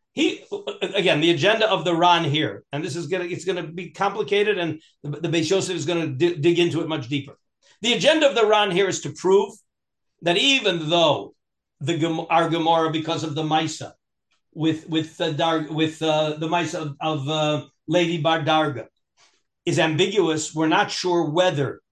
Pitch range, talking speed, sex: 160-215 Hz, 190 wpm, male